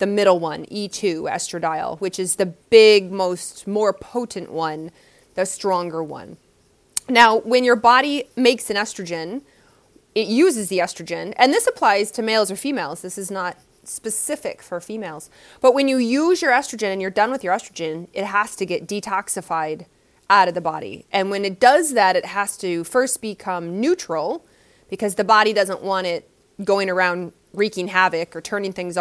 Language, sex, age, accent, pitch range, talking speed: English, female, 20-39, American, 185-235 Hz, 175 wpm